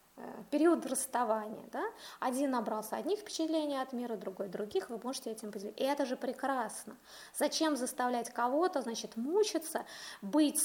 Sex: female